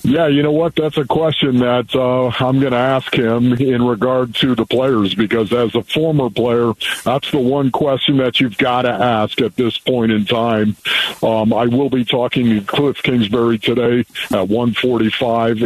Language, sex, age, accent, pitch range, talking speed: English, male, 50-69, American, 115-140 Hz, 190 wpm